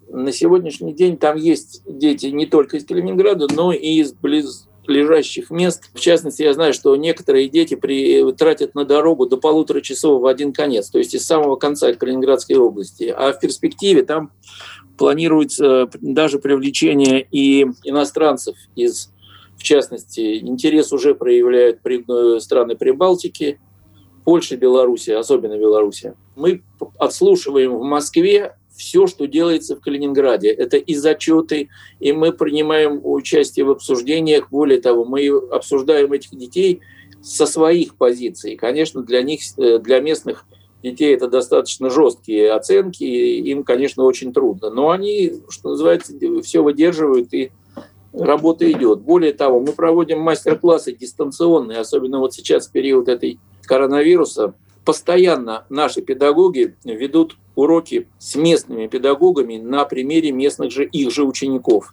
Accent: native